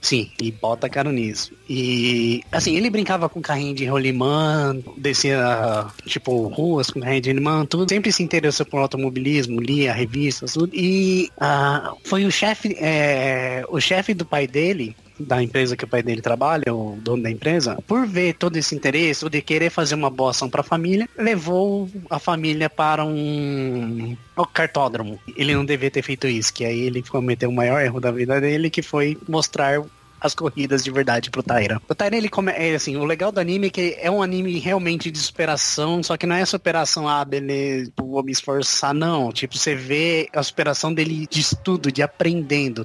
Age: 20-39